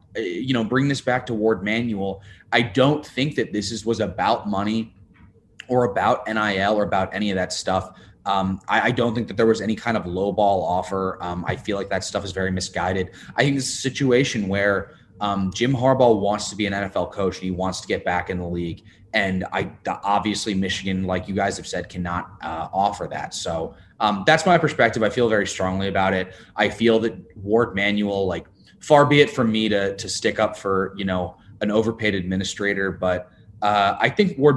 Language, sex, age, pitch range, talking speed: English, male, 20-39, 95-115 Hz, 210 wpm